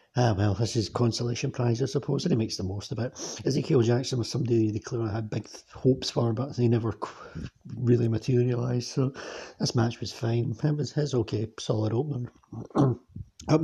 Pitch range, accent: 110-130 Hz, British